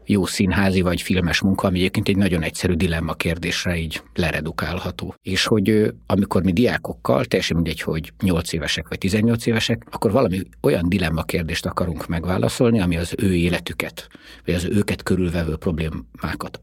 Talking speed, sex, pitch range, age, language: 150 wpm, male, 85-100 Hz, 50-69, Hungarian